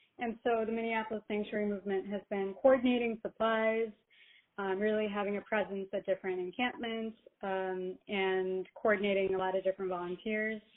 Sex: female